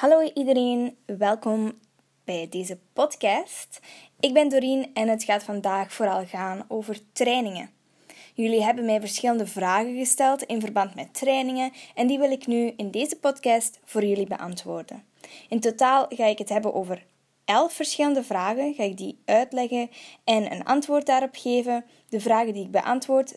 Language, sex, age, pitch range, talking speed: Dutch, female, 10-29, 210-260 Hz, 160 wpm